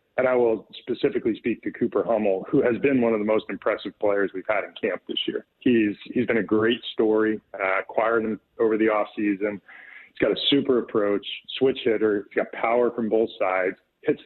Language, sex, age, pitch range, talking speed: English, male, 40-59, 105-120 Hz, 205 wpm